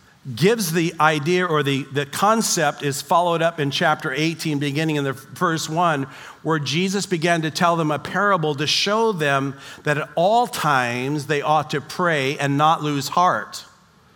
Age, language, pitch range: 50-69, English, 150-195 Hz